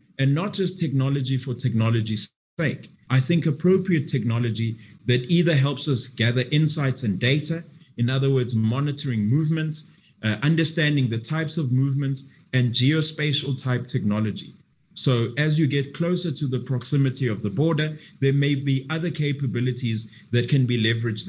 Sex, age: male, 30-49